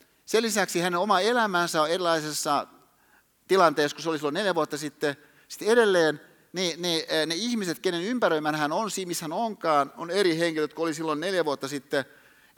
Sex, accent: male, native